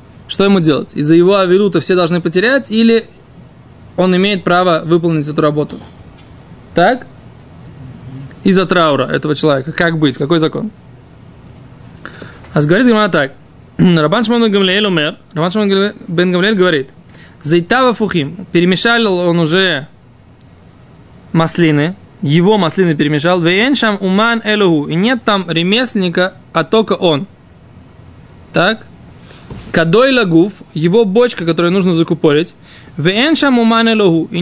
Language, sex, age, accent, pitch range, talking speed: Russian, male, 20-39, native, 160-210 Hz, 110 wpm